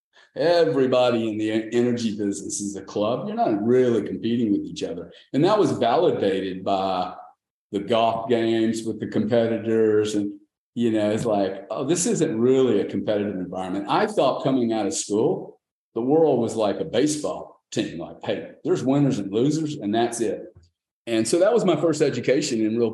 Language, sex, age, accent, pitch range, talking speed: English, male, 40-59, American, 100-130 Hz, 180 wpm